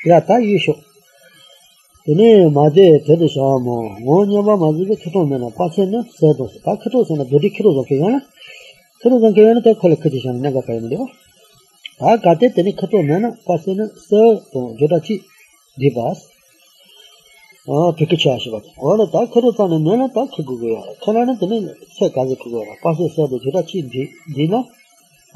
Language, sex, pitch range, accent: English, male, 135-200 Hz, Indian